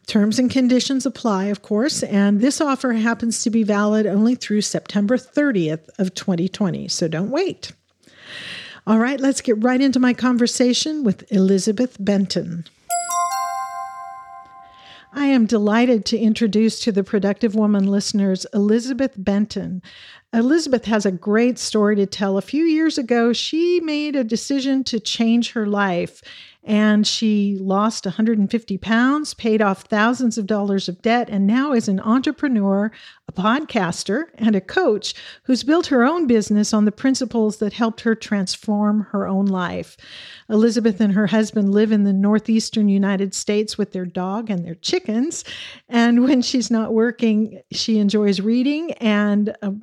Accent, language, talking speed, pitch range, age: American, English, 150 wpm, 200-240 Hz, 50-69